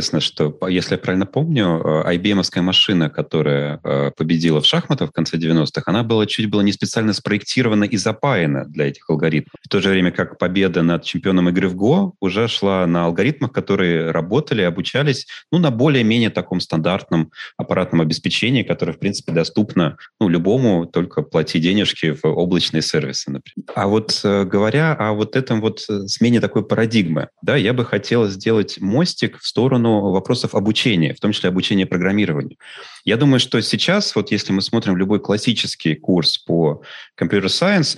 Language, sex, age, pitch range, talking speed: Russian, male, 30-49, 85-120 Hz, 165 wpm